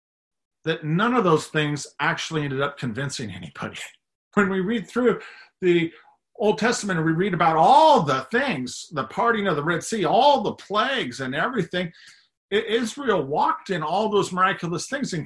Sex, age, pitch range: male, 50-69, 135-200 Hz